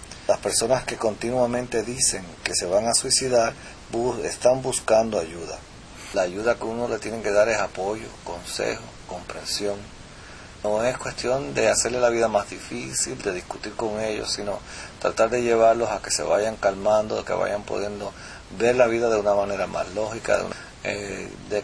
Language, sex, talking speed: English, male, 175 wpm